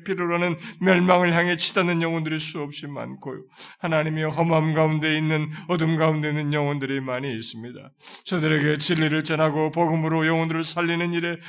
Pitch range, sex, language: 150-175 Hz, male, Korean